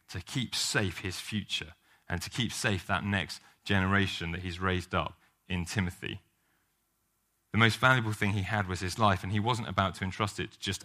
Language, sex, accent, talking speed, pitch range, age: English, male, British, 200 wpm, 95-110 Hz, 30-49